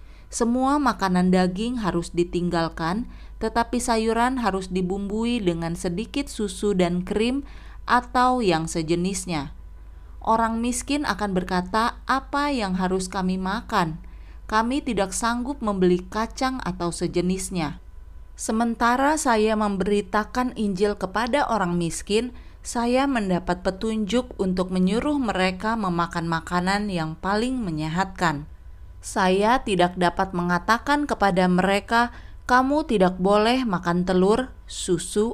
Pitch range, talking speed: 175-230 Hz, 105 wpm